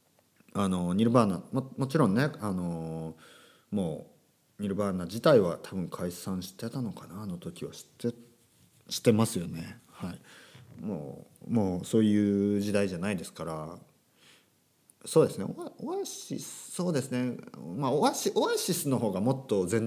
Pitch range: 95-130 Hz